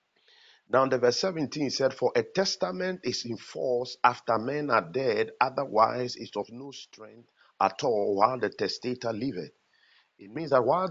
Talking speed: 165 wpm